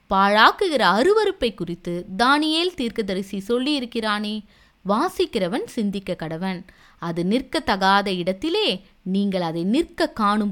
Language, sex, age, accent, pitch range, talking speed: Tamil, female, 20-39, native, 185-295 Hz, 95 wpm